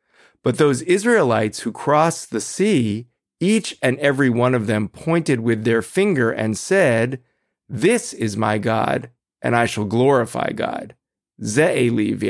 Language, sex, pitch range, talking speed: English, male, 115-160 Hz, 140 wpm